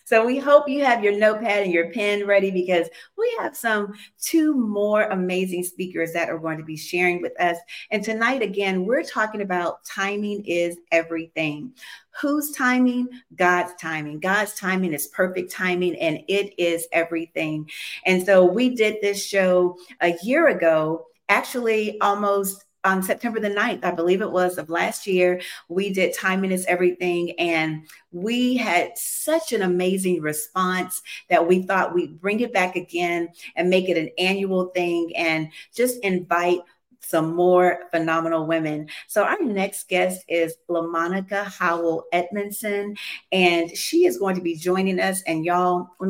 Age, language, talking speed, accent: 40-59, English, 160 wpm, American